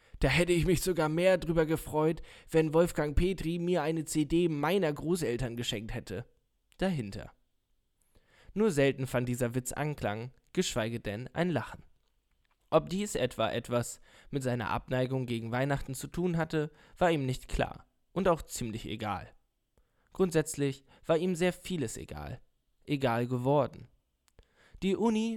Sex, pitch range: male, 125-170 Hz